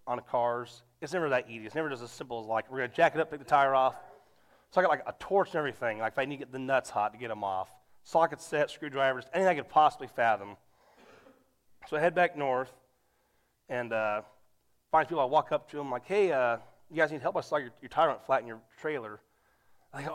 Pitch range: 120-150 Hz